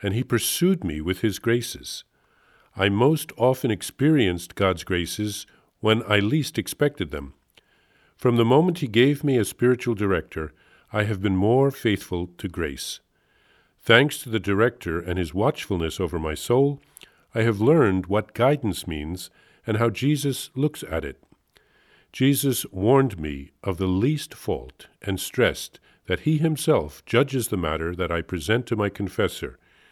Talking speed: 155 wpm